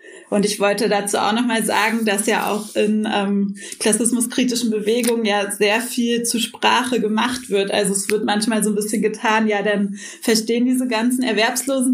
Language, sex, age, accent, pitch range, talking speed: German, female, 20-39, German, 205-225 Hz, 180 wpm